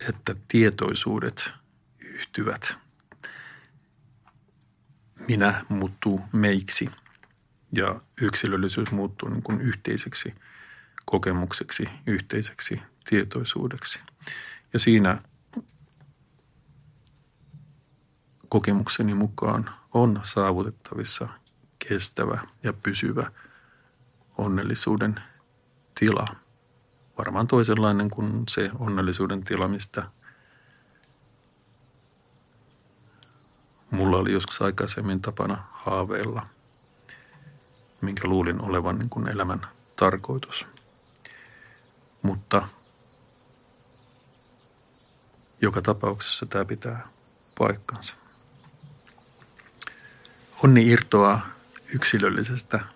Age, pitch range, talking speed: 50-69, 100-125 Hz, 60 wpm